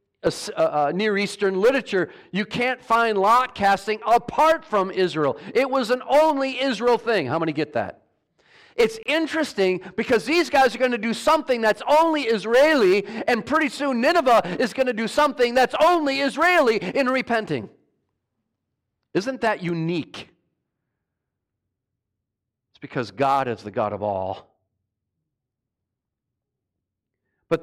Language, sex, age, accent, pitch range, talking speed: English, male, 50-69, American, 145-235 Hz, 135 wpm